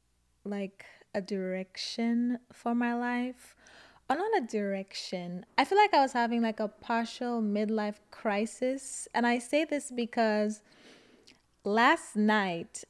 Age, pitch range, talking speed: 20-39, 205-245 Hz, 130 wpm